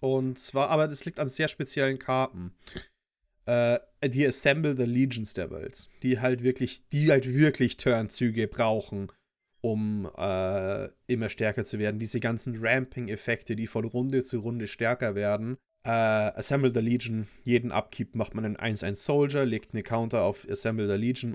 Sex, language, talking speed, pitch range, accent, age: male, German, 160 wpm, 110-135 Hz, German, 30-49